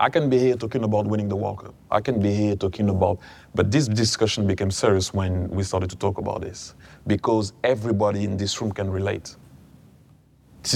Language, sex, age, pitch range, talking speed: English, male, 30-49, 100-115 Hz, 195 wpm